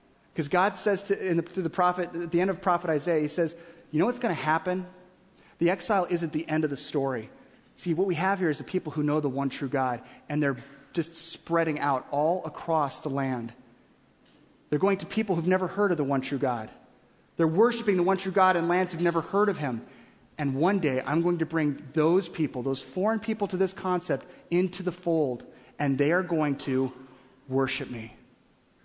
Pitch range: 155-190 Hz